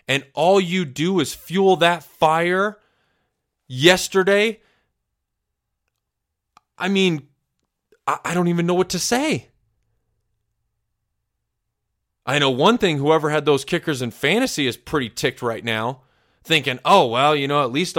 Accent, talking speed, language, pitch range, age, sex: American, 135 wpm, English, 115-155 Hz, 20-39, male